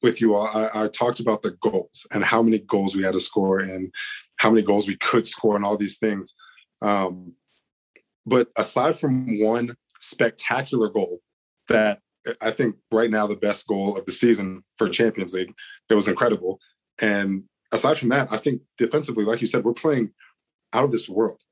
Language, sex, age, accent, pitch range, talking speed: English, male, 20-39, American, 100-115 Hz, 190 wpm